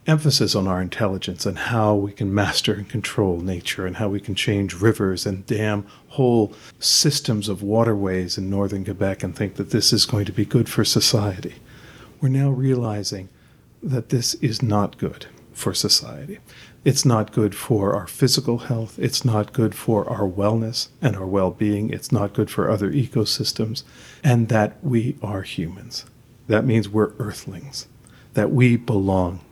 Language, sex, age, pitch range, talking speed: English, male, 40-59, 105-130 Hz, 165 wpm